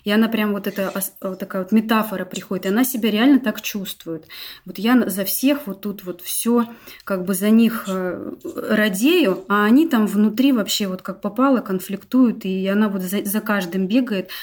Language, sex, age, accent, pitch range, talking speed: Russian, female, 20-39, native, 195-230 Hz, 185 wpm